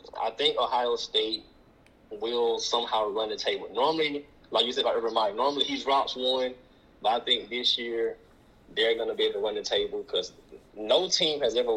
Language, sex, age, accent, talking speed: English, male, 20-39, American, 190 wpm